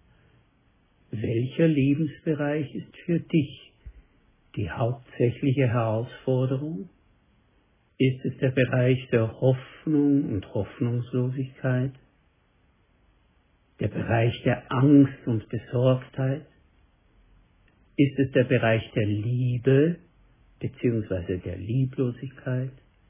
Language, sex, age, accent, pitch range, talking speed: German, male, 60-79, German, 110-140 Hz, 80 wpm